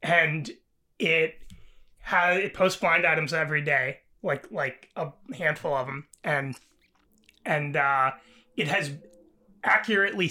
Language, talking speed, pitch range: English, 120 wpm, 150-190 Hz